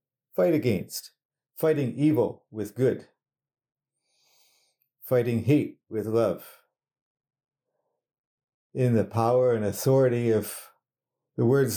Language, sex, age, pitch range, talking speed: English, male, 50-69, 115-140 Hz, 90 wpm